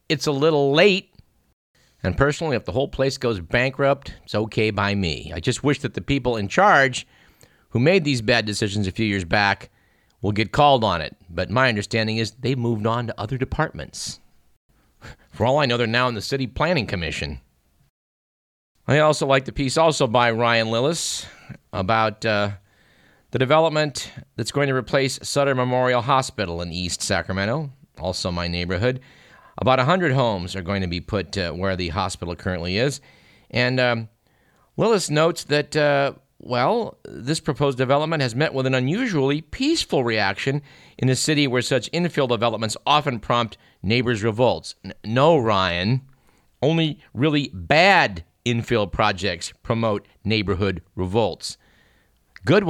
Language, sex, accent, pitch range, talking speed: English, male, American, 100-140 Hz, 155 wpm